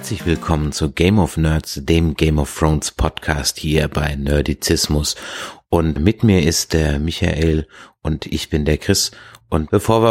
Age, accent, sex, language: 30-49, German, male, German